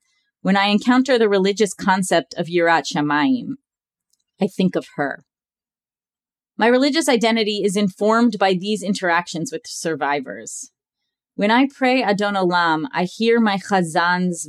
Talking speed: 135 wpm